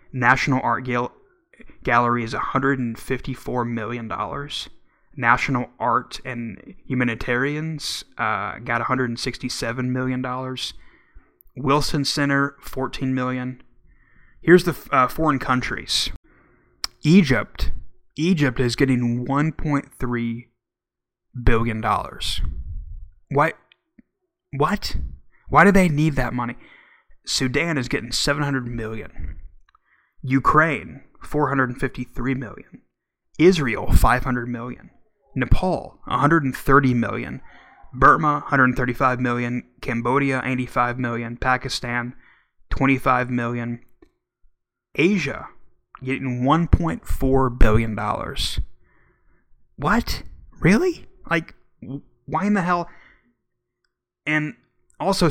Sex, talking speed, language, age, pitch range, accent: male, 85 wpm, English, 20-39, 120-140 Hz, American